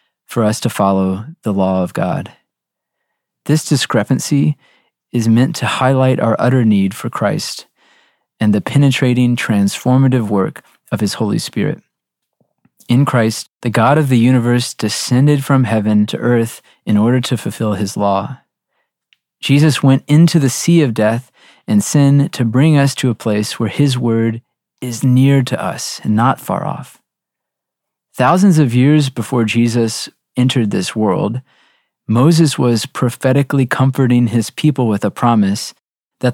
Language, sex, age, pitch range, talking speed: English, male, 30-49, 115-135 Hz, 150 wpm